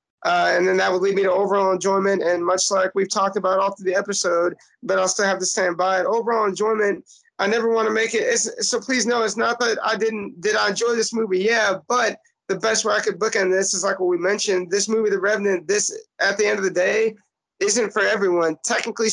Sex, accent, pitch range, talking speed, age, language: male, American, 185-220 Hz, 250 wpm, 30-49, English